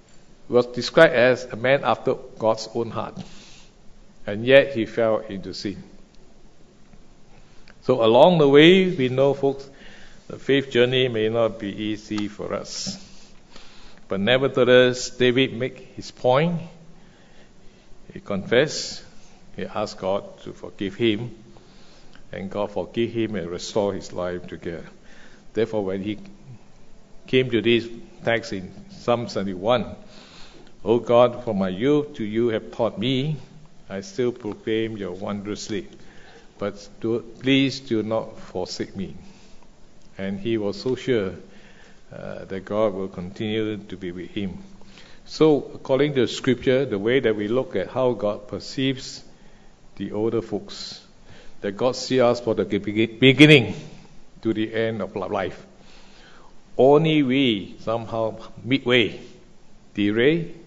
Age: 50-69